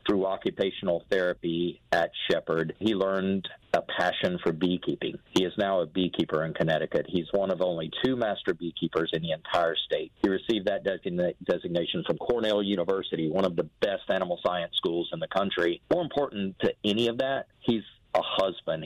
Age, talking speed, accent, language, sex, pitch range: 40-59, 175 wpm, American, English, male, 85-100 Hz